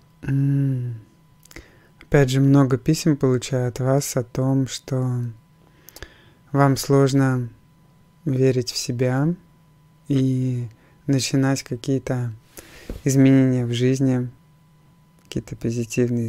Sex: male